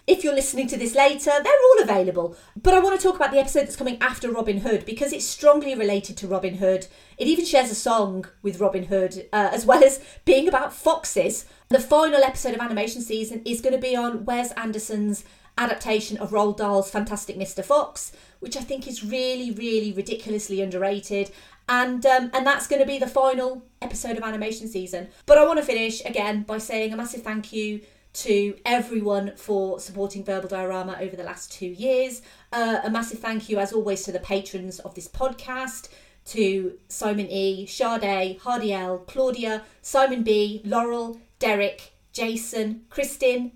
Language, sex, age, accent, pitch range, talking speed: English, female, 30-49, British, 205-255 Hz, 185 wpm